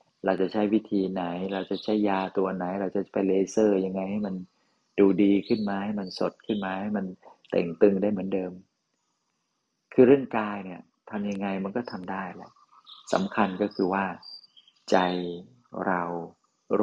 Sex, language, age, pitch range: male, Thai, 30-49, 95-105 Hz